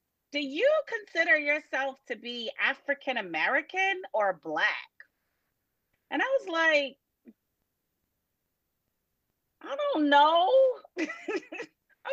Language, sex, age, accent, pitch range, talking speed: English, female, 30-49, American, 215-300 Hz, 85 wpm